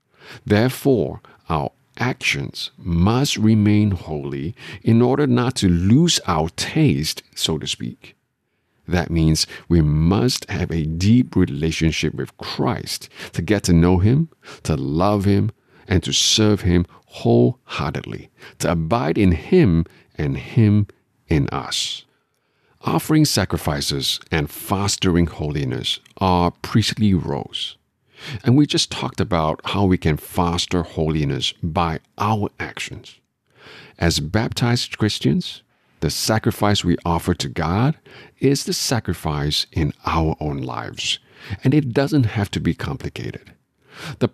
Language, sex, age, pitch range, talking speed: English, male, 50-69, 80-110 Hz, 125 wpm